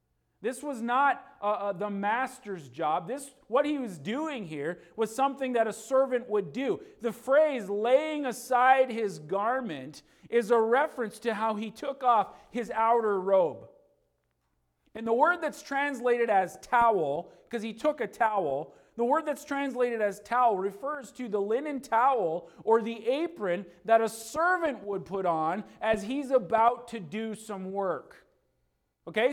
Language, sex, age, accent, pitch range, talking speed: English, male, 40-59, American, 200-270 Hz, 160 wpm